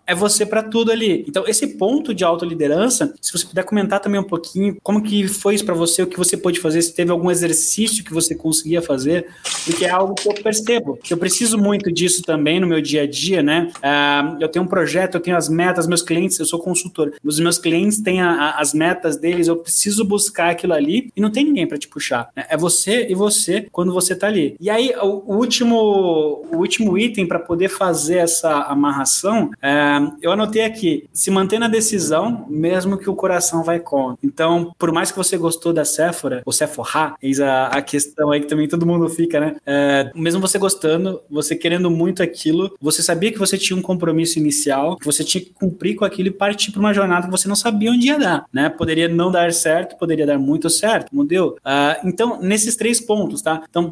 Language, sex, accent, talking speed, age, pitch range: Portuguese, male, Brazilian, 220 wpm, 20-39, 160-200 Hz